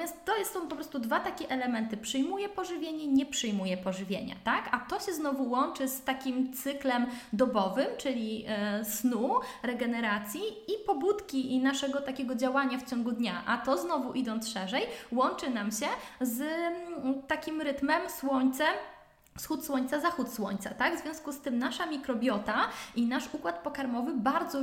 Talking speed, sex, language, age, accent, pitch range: 155 wpm, female, Polish, 20-39, native, 230-280 Hz